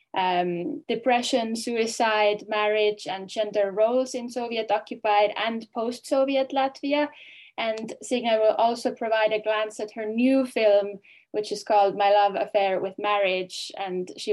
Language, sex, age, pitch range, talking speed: English, female, 10-29, 200-255 Hz, 140 wpm